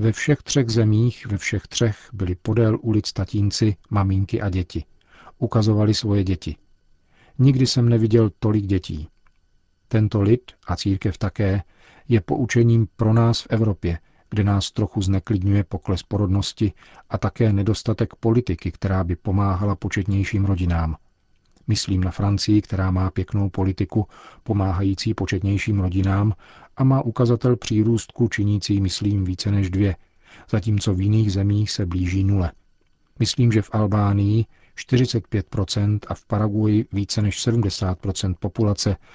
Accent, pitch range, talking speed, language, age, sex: native, 95-115 Hz, 130 wpm, Czech, 40-59, male